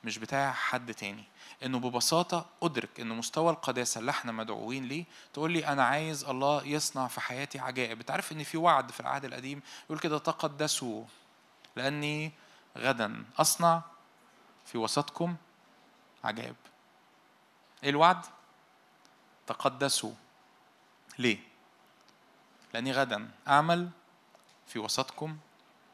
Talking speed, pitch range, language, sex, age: 115 wpm, 125-160 Hz, Arabic, male, 20-39